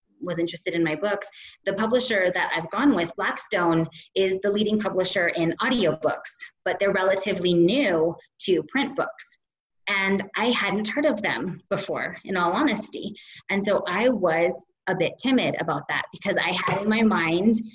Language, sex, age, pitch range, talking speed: English, female, 20-39, 170-215 Hz, 170 wpm